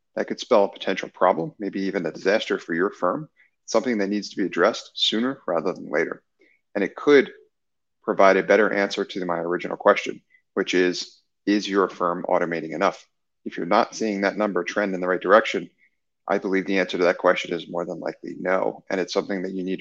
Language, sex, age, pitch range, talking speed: English, male, 30-49, 95-120 Hz, 210 wpm